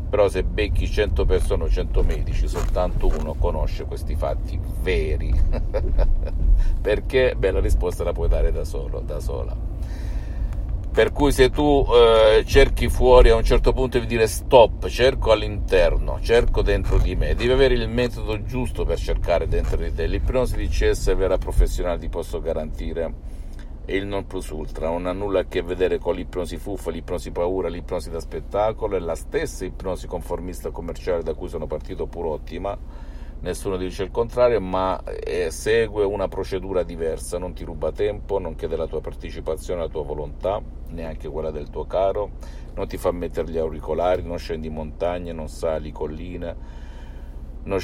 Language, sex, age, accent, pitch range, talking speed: Italian, male, 50-69, native, 80-120 Hz, 170 wpm